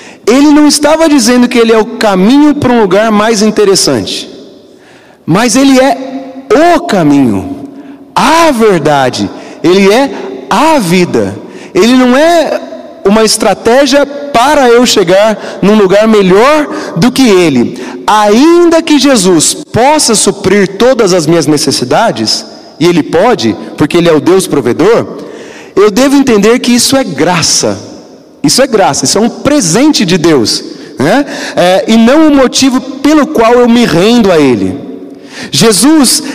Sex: male